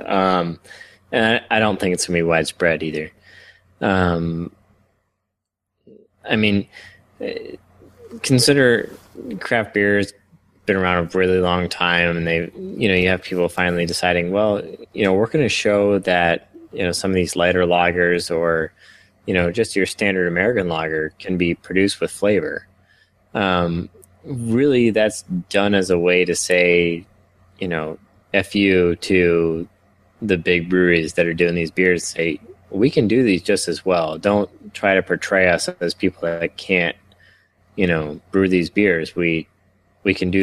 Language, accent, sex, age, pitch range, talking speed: English, American, male, 20-39, 85-100 Hz, 160 wpm